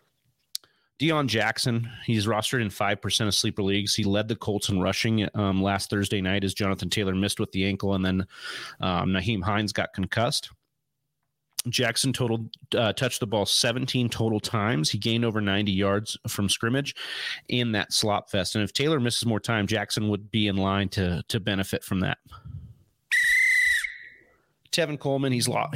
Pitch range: 100-120 Hz